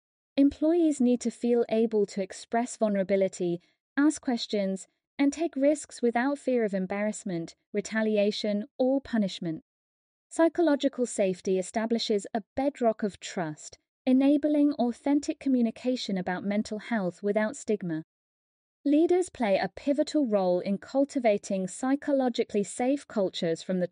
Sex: female